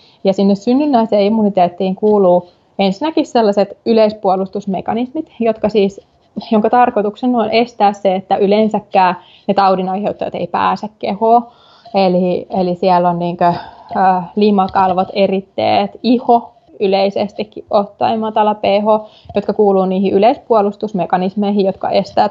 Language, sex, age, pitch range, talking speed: Finnish, female, 20-39, 190-225 Hz, 110 wpm